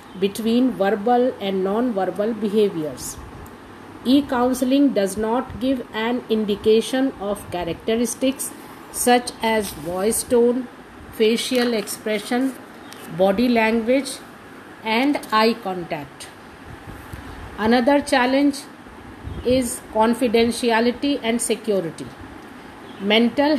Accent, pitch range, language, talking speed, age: native, 215-265 Hz, Hindi, 85 wpm, 50-69